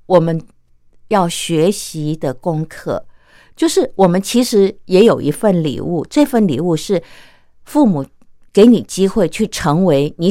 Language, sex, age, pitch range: Japanese, female, 50-69, 145-225 Hz